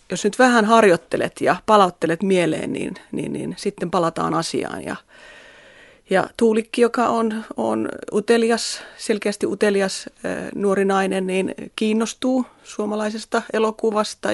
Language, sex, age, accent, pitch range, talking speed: Finnish, female, 30-49, native, 175-220 Hz, 120 wpm